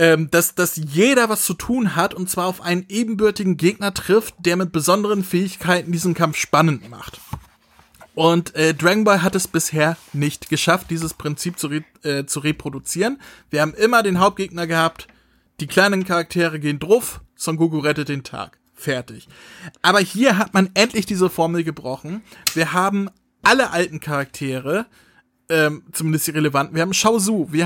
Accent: German